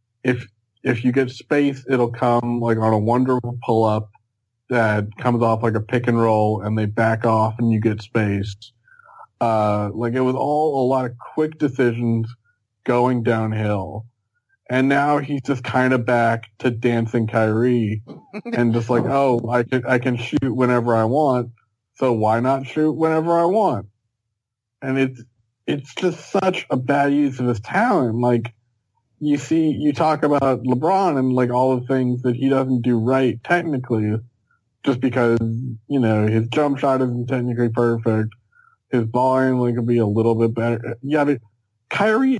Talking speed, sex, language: 170 wpm, male, English